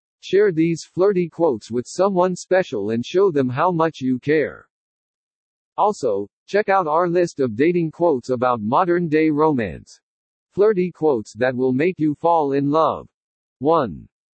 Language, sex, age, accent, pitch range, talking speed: English, male, 50-69, American, 135-180 Hz, 145 wpm